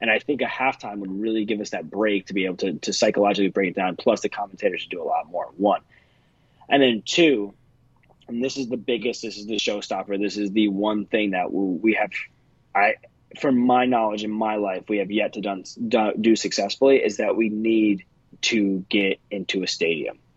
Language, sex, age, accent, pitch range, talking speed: English, male, 20-39, American, 100-125 Hz, 210 wpm